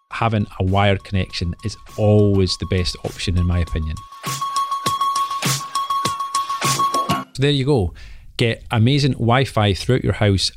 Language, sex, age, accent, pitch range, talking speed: English, male, 30-49, British, 95-125 Hz, 120 wpm